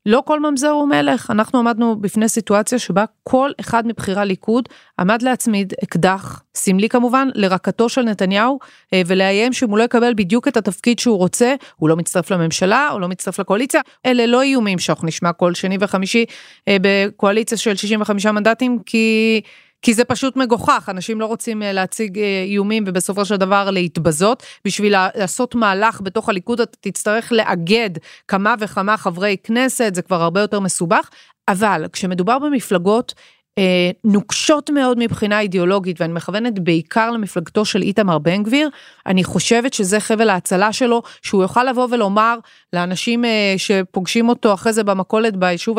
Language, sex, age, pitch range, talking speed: Hebrew, female, 30-49, 190-240 Hz, 150 wpm